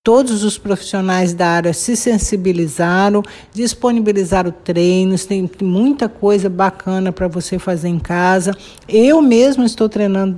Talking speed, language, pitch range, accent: 125 wpm, Portuguese, 185-225 Hz, Brazilian